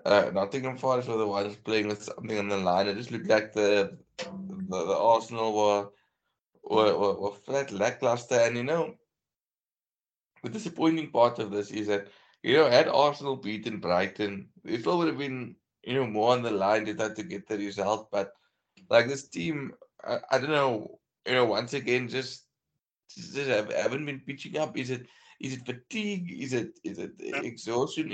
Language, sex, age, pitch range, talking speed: English, male, 20-39, 105-135 Hz, 190 wpm